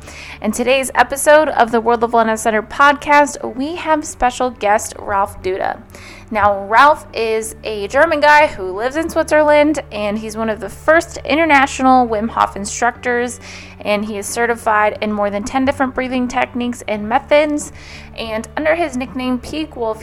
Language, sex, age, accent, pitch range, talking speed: English, female, 20-39, American, 205-260 Hz, 165 wpm